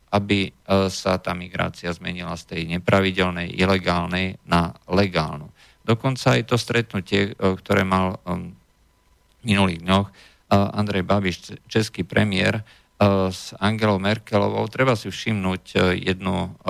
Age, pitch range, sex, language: 50-69, 90-100 Hz, male, Slovak